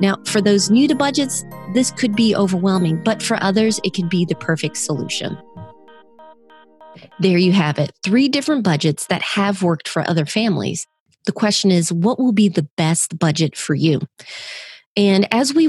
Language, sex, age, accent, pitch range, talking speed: English, female, 30-49, American, 175-230 Hz, 175 wpm